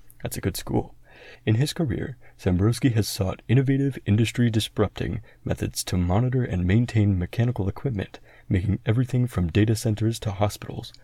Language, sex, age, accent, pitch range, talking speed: English, male, 30-49, American, 100-120 Hz, 145 wpm